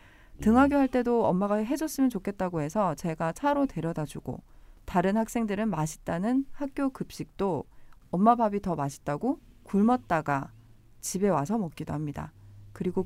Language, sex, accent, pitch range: Korean, female, native, 155-225 Hz